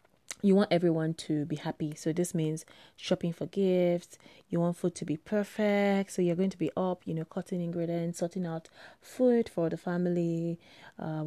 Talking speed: 185 wpm